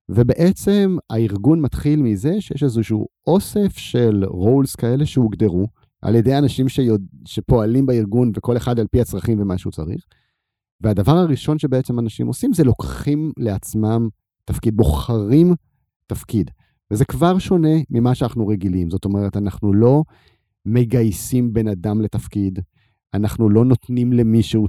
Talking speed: 130 wpm